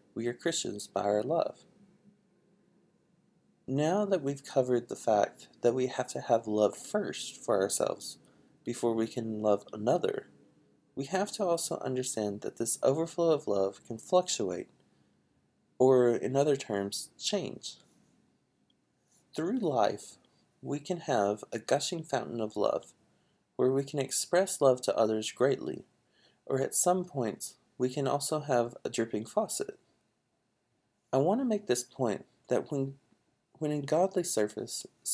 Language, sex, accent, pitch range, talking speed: English, male, American, 120-175 Hz, 145 wpm